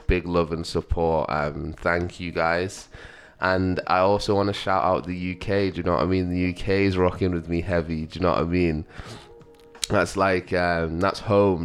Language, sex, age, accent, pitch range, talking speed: English, male, 20-39, British, 85-95 Hz, 210 wpm